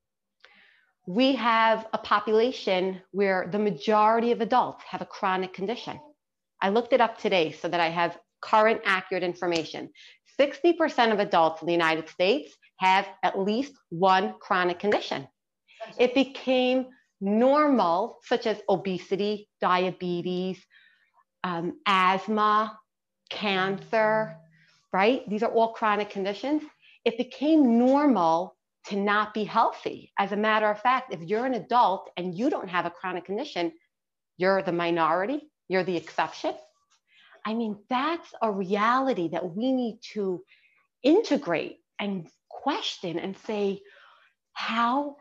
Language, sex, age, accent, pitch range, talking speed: English, female, 40-59, American, 185-245 Hz, 130 wpm